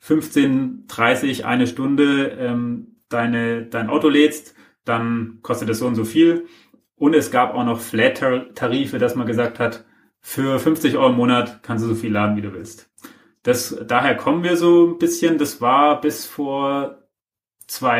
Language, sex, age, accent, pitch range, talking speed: German, male, 30-49, German, 115-145 Hz, 170 wpm